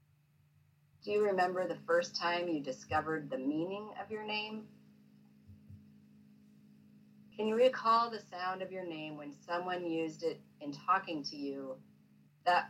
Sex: female